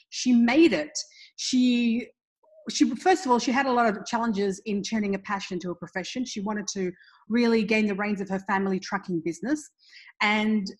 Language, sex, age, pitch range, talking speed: English, female, 30-49, 195-265 Hz, 190 wpm